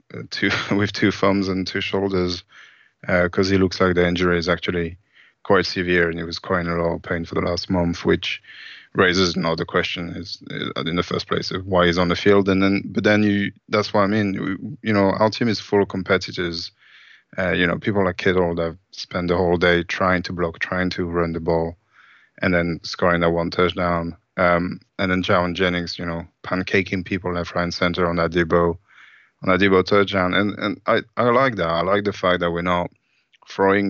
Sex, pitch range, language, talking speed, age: male, 85-95 Hz, English, 215 wpm, 20-39